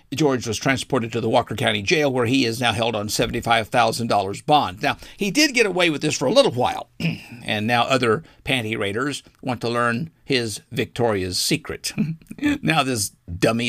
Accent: American